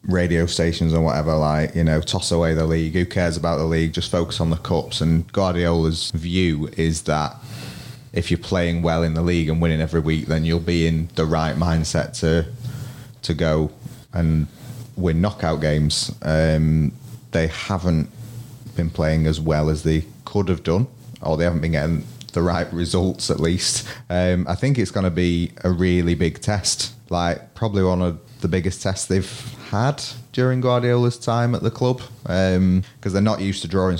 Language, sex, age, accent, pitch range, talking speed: English, male, 30-49, British, 80-100 Hz, 185 wpm